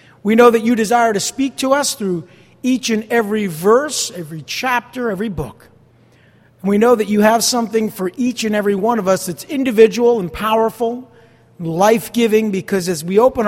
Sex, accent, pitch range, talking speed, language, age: male, American, 170-230 Hz, 180 wpm, English, 50-69